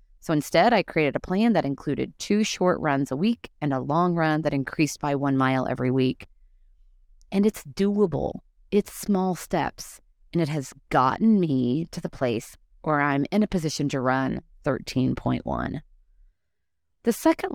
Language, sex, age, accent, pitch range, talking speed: English, female, 30-49, American, 130-200 Hz, 165 wpm